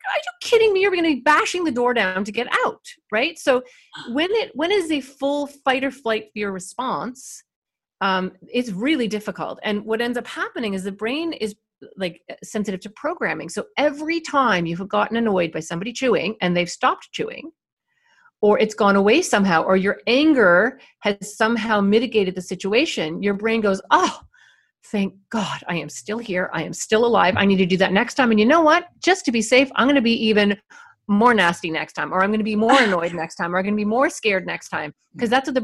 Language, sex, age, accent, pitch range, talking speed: English, female, 40-59, American, 200-275 Hz, 220 wpm